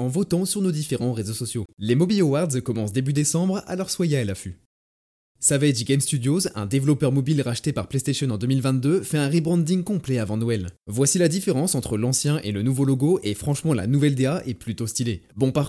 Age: 20-39